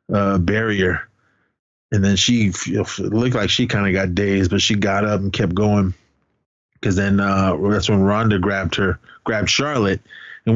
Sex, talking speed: male, 175 wpm